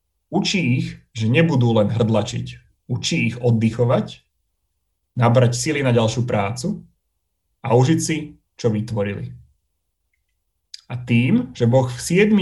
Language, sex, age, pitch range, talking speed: Slovak, male, 30-49, 100-130 Hz, 120 wpm